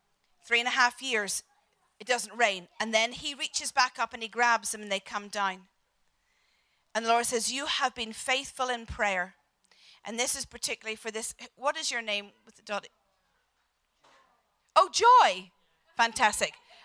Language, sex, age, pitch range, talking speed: English, female, 40-59, 220-275 Hz, 160 wpm